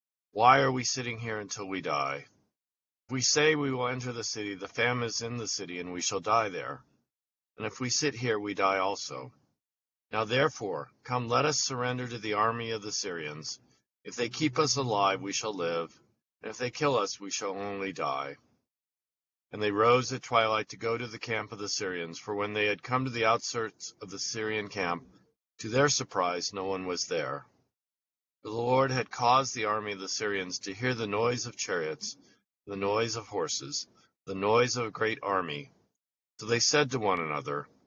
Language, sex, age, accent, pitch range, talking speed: English, male, 50-69, American, 100-120 Hz, 200 wpm